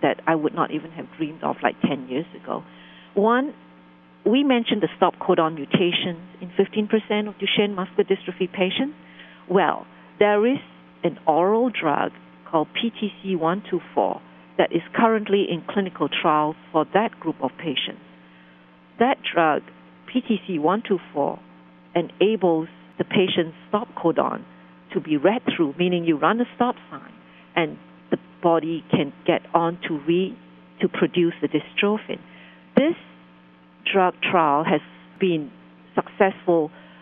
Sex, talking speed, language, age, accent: female, 130 wpm, English, 50-69, Malaysian